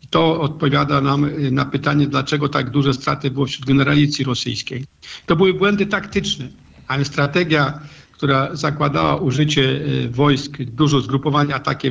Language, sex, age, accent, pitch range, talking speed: Polish, male, 50-69, native, 130-145 Hz, 135 wpm